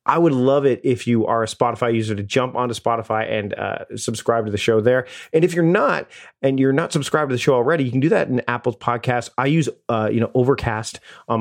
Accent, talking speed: American, 245 wpm